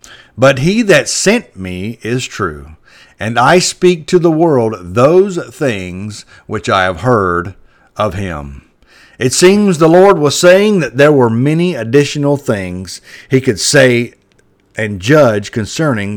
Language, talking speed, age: English, 145 wpm, 50-69